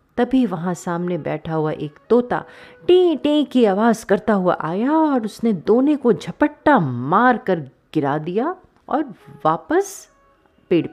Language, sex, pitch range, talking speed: Hindi, female, 165-250 Hz, 145 wpm